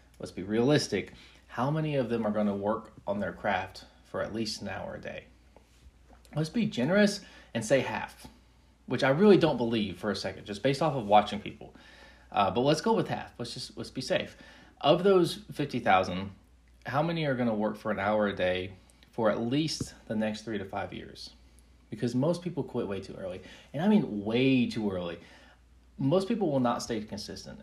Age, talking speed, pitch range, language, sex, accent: 30-49, 210 wpm, 100-140 Hz, English, male, American